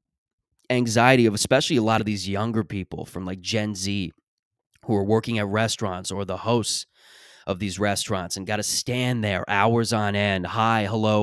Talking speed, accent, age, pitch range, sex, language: 180 wpm, American, 20-39, 100-130 Hz, male, English